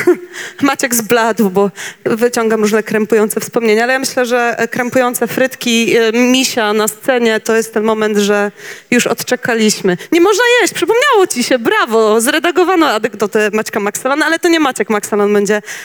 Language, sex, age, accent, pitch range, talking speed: Polish, female, 30-49, native, 215-265 Hz, 150 wpm